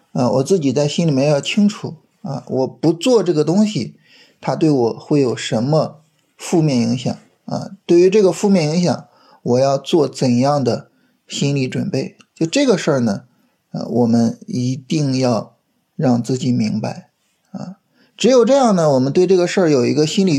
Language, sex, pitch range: Chinese, male, 130-185 Hz